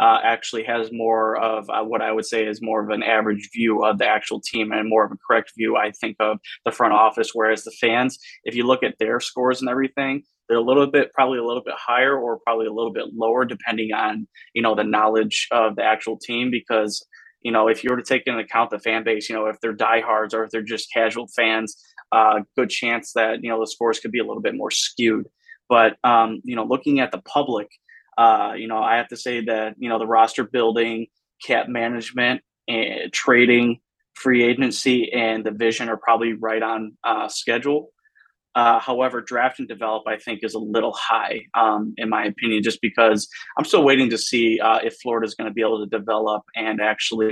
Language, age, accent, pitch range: English, 20-39, American, 110-120 Hz